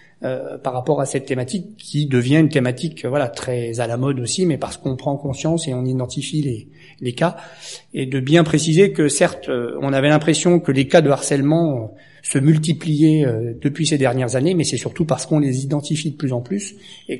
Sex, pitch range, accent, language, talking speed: male, 135-165 Hz, French, French, 220 wpm